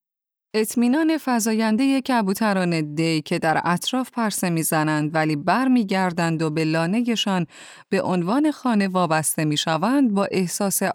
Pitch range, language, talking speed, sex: 160-220 Hz, Persian, 120 wpm, female